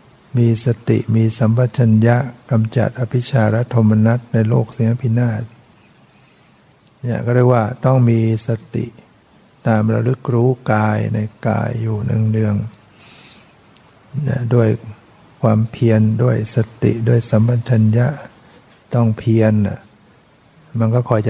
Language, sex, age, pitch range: Thai, male, 60-79, 110-120 Hz